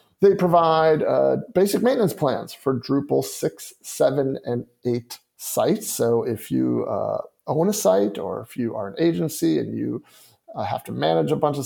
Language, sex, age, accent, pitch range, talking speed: English, male, 40-59, American, 125-165 Hz, 180 wpm